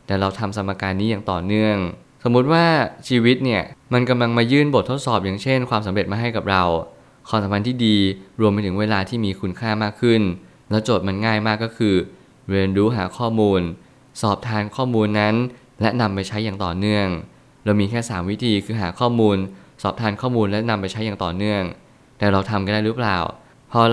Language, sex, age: Thai, male, 20-39